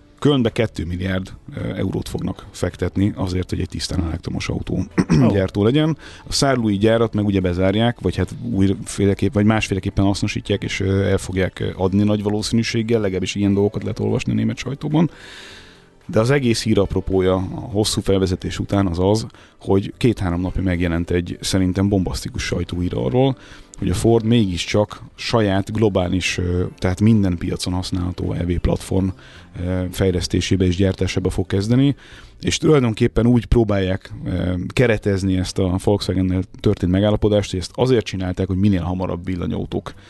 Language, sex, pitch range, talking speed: Hungarian, male, 95-110 Hz, 140 wpm